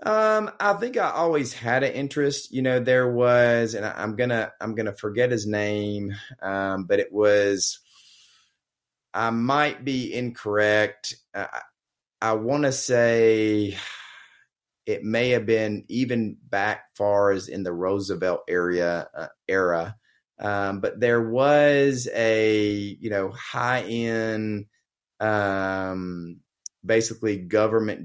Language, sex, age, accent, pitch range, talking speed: English, male, 30-49, American, 100-120 Hz, 130 wpm